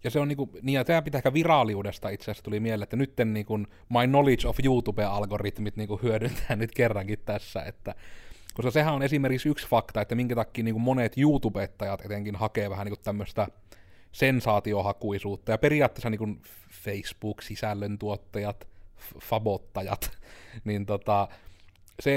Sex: male